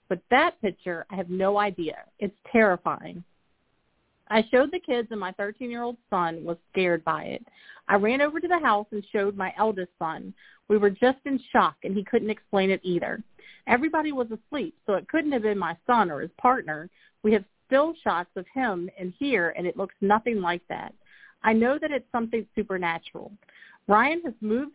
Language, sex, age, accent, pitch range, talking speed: English, female, 40-59, American, 185-245 Hz, 190 wpm